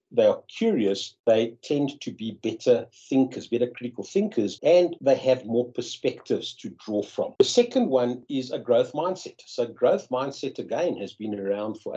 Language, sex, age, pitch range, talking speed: English, male, 60-79, 110-140 Hz, 175 wpm